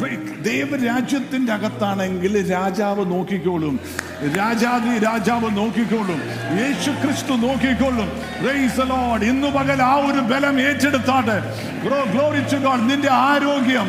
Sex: male